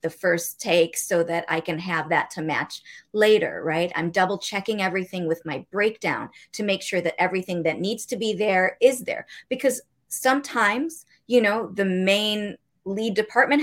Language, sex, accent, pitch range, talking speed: English, female, American, 185-245 Hz, 175 wpm